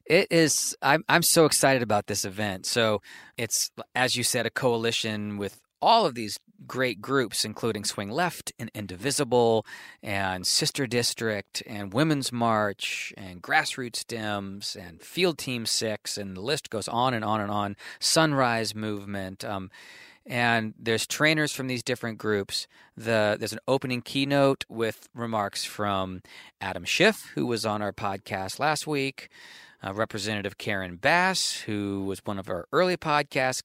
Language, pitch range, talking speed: English, 105-135 Hz, 155 wpm